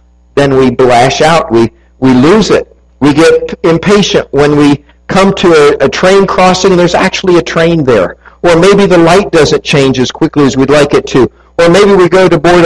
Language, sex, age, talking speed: English, male, 50-69, 210 wpm